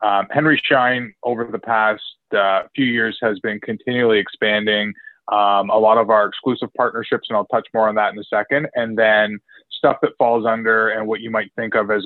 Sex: male